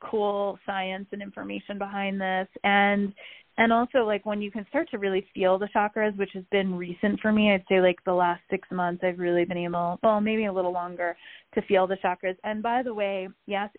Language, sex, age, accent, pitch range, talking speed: English, female, 20-39, American, 180-205 Hz, 220 wpm